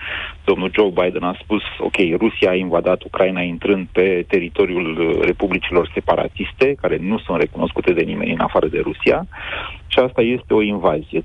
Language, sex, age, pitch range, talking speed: Romanian, male, 40-59, 95-125 Hz, 160 wpm